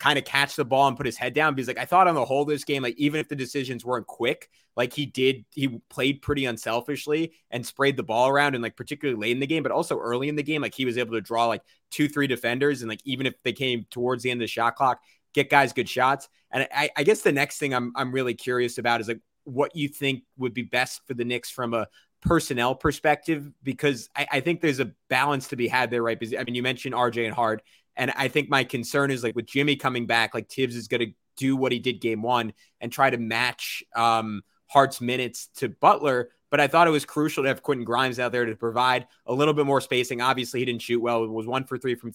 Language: English